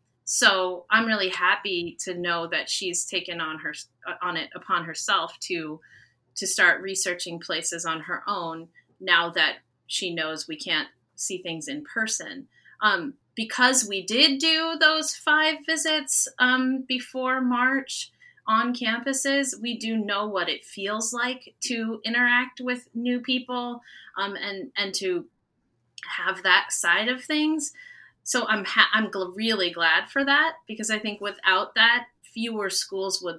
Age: 30-49